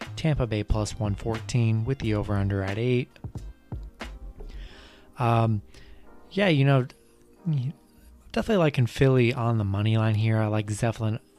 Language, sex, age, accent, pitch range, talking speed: English, male, 20-39, American, 105-120 Hz, 135 wpm